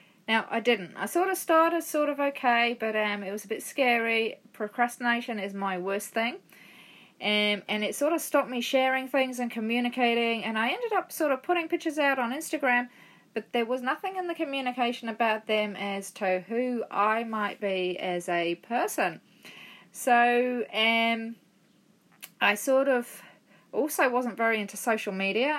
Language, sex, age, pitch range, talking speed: English, female, 30-49, 205-265 Hz, 170 wpm